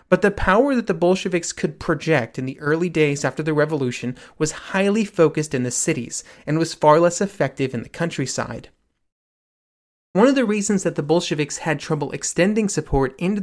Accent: American